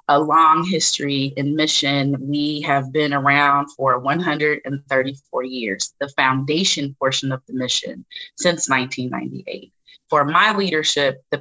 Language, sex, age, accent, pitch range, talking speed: English, female, 30-49, American, 140-180 Hz, 125 wpm